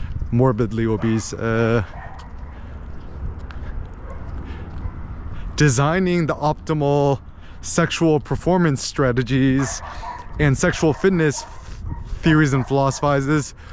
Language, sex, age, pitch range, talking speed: English, male, 20-39, 105-155 Hz, 70 wpm